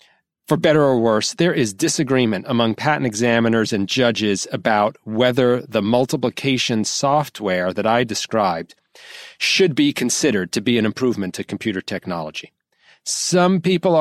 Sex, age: male, 40-59